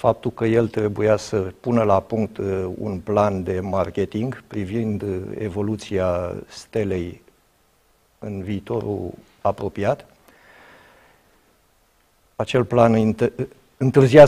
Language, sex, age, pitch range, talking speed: Romanian, male, 50-69, 95-115 Hz, 90 wpm